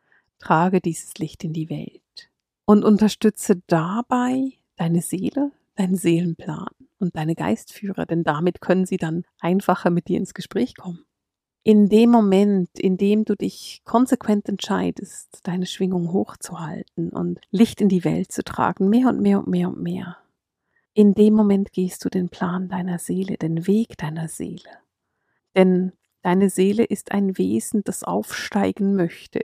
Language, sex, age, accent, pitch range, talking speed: German, female, 50-69, German, 175-210 Hz, 155 wpm